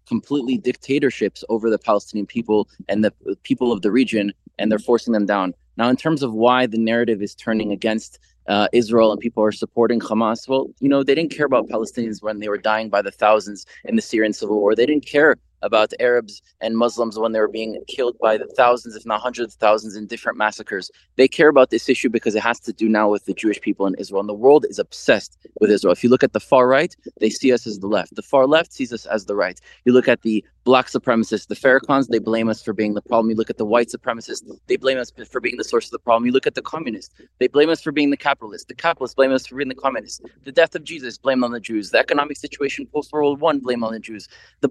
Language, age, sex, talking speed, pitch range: English, 20-39, male, 255 wpm, 110-140 Hz